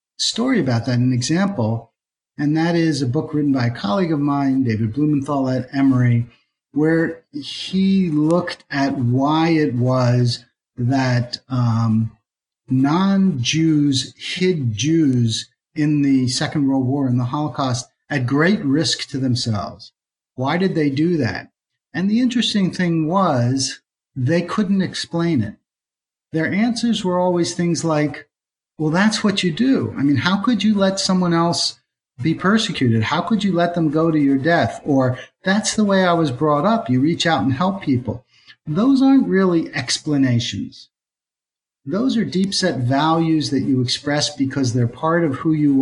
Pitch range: 125-175 Hz